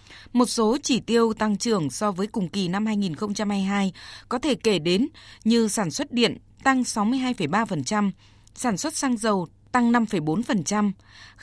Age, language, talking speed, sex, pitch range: 20-39, Vietnamese, 145 wpm, female, 195-240 Hz